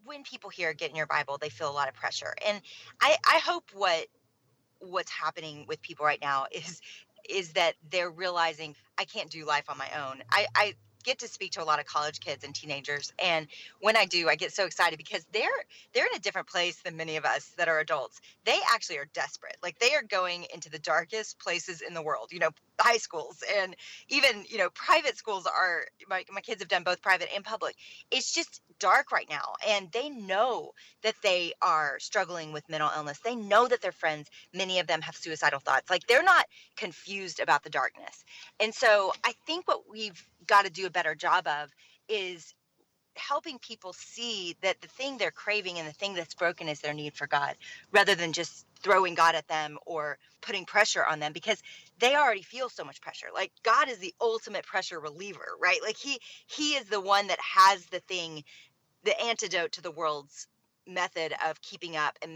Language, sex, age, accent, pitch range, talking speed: English, female, 30-49, American, 155-210 Hz, 210 wpm